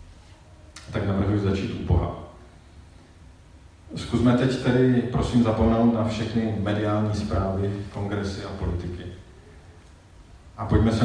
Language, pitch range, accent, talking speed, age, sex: Czech, 85-110 Hz, native, 110 wpm, 40-59, male